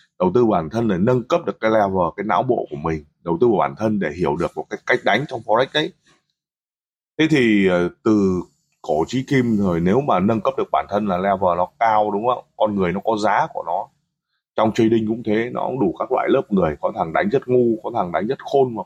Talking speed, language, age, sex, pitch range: 250 wpm, Vietnamese, 20-39, male, 105-155 Hz